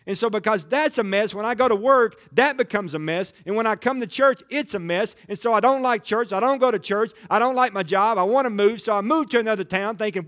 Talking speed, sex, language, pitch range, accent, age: 300 wpm, male, English, 165-240 Hz, American, 40-59